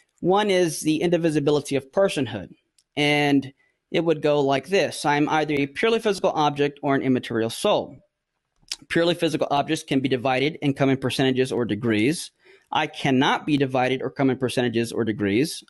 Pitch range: 135-165 Hz